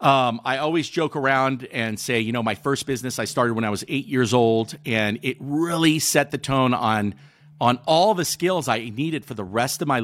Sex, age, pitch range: male, 40-59, 110-150 Hz